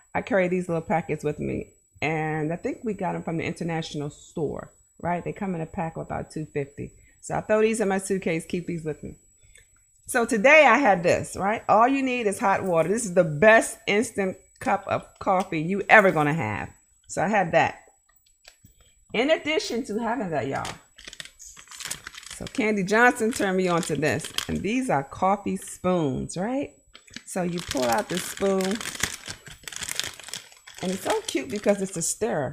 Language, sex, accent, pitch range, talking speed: English, female, American, 160-205 Hz, 185 wpm